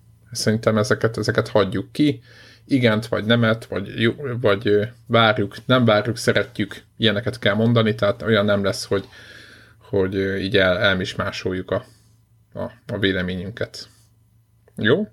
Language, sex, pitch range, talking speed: Hungarian, male, 110-120 Hz, 125 wpm